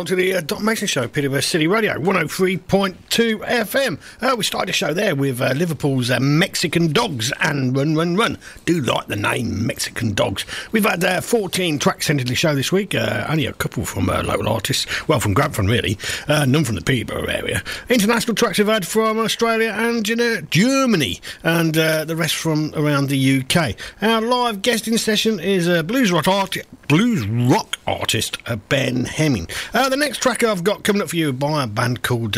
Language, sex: English, male